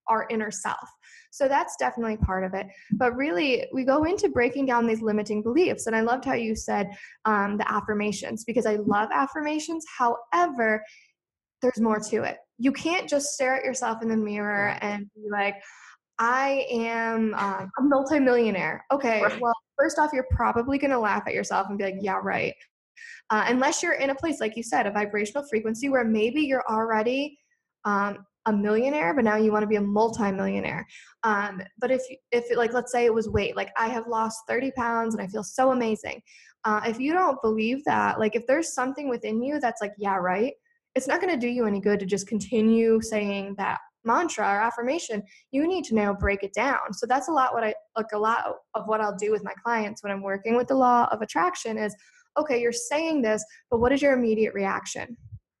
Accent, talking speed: American, 205 wpm